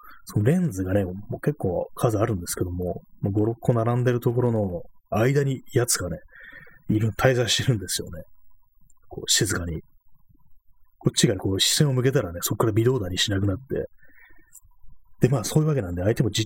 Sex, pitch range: male, 100-145 Hz